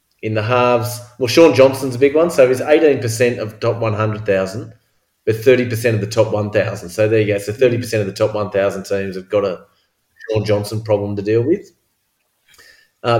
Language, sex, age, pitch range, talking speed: English, male, 30-49, 105-120 Hz, 225 wpm